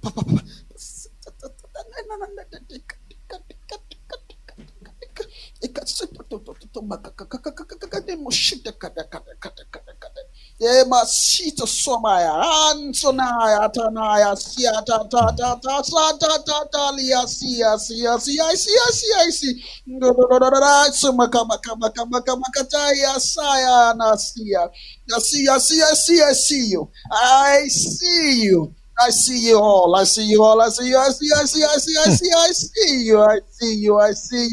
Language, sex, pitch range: English, male, 225-295 Hz